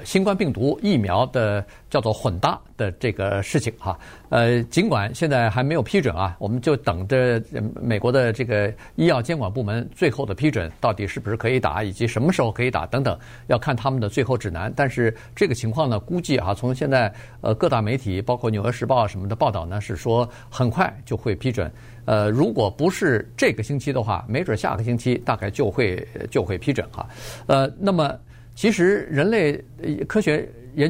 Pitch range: 110-150 Hz